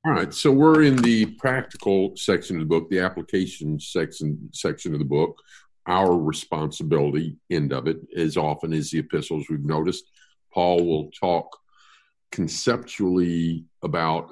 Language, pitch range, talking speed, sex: English, 80-110 Hz, 145 wpm, male